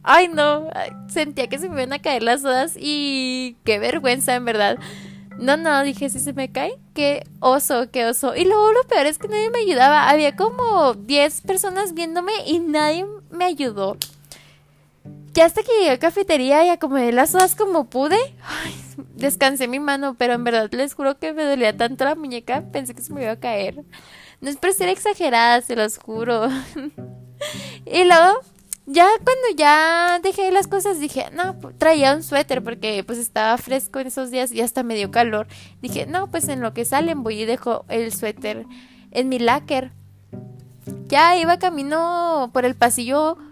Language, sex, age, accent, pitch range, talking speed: Spanish, female, 10-29, Mexican, 240-340 Hz, 185 wpm